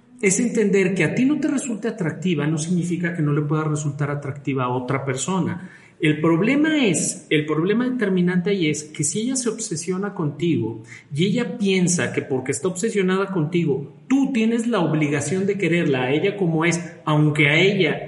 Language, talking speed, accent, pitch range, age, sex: Spanish, 185 wpm, Mexican, 150-190 Hz, 40-59, male